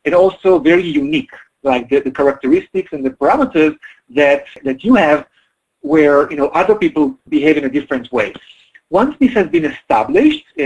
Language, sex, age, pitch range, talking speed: English, male, 40-59, 140-205 Hz, 170 wpm